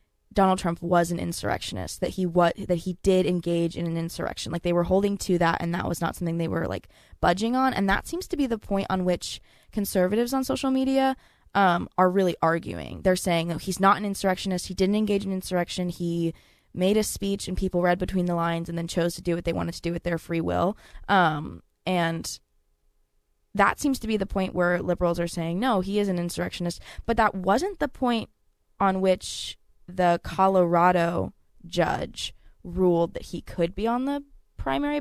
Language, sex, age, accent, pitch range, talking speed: English, female, 20-39, American, 170-200 Hz, 200 wpm